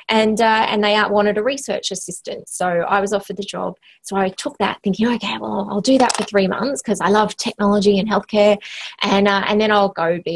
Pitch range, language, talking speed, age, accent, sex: 180-210 Hz, English, 230 wpm, 20-39, Australian, female